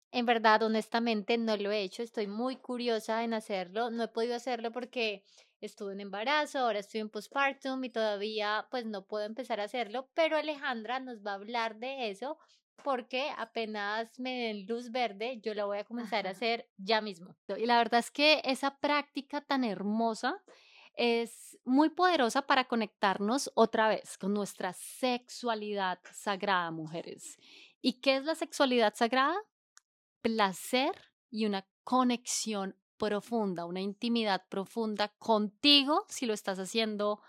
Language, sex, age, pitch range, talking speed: Spanish, female, 20-39, 210-255 Hz, 155 wpm